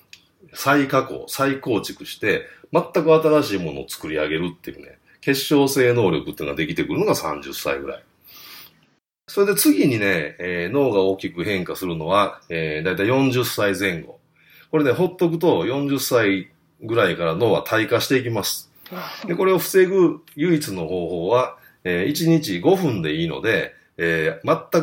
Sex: male